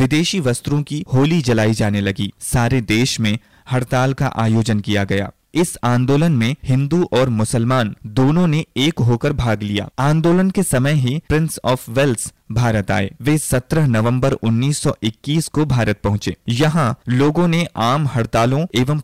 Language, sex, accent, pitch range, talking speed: Hindi, male, native, 110-140 Hz, 155 wpm